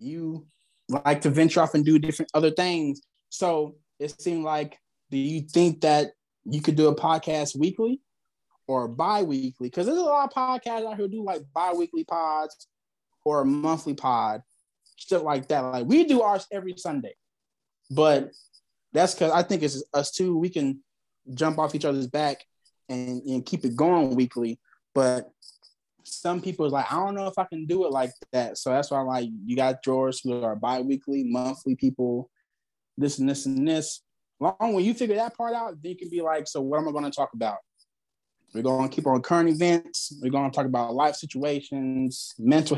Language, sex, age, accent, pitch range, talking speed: English, male, 20-39, American, 135-175 Hz, 200 wpm